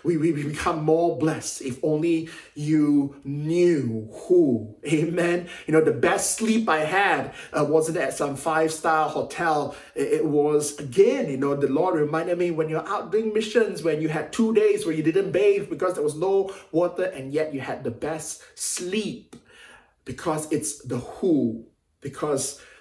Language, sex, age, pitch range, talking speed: English, male, 20-39, 145-175 Hz, 170 wpm